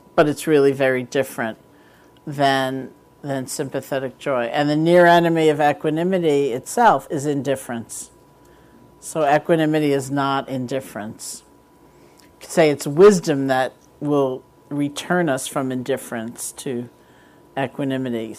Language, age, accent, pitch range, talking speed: English, 50-69, American, 135-165 Hz, 115 wpm